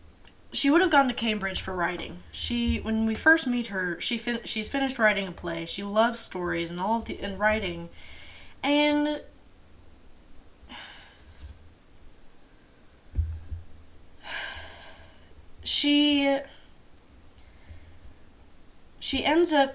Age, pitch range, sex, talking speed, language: 20-39, 165-235 Hz, female, 105 wpm, English